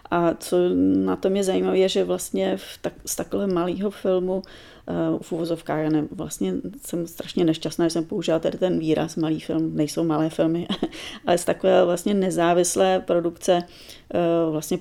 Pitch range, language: 160-180 Hz, Czech